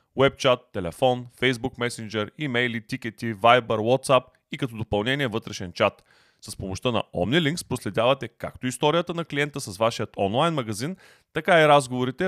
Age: 30-49